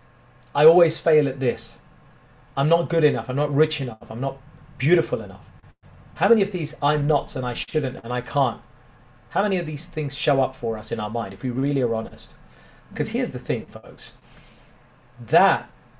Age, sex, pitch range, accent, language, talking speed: 30-49, male, 120-150 Hz, British, English, 195 wpm